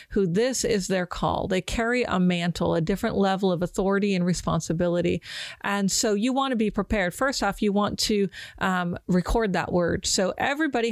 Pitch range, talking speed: 185-230 Hz, 185 wpm